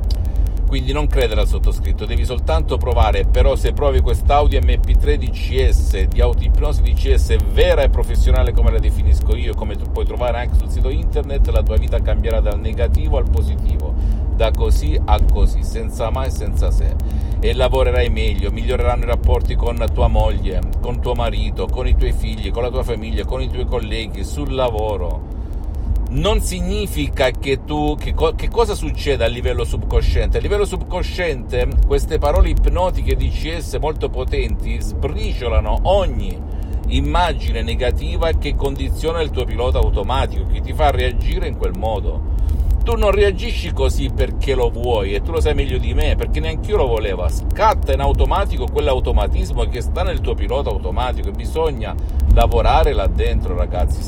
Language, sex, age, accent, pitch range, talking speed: Italian, male, 50-69, native, 70-80 Hz, 165 wpm